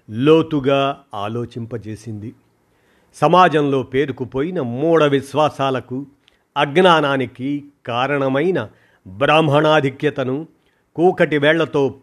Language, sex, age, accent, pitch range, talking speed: Telugu, male, 50-69, native, 125-150 Hz, 50 wpm